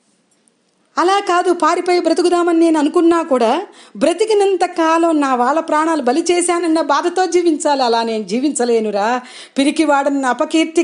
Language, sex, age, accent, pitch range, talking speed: Telugu, female, 40-59, native, 220-315 Hz, 110 wpm